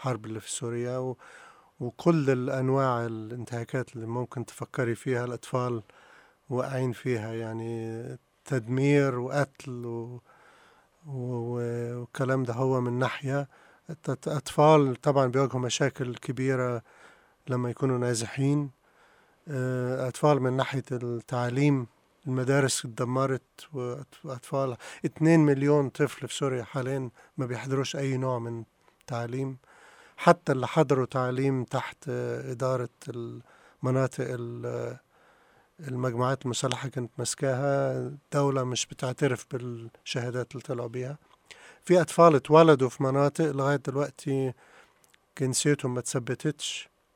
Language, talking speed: Arabic, 100 wpm